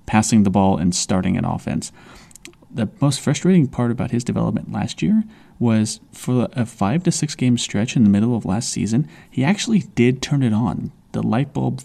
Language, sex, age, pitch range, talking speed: English, male, 30-49, 100-125 Hz, 200 wpm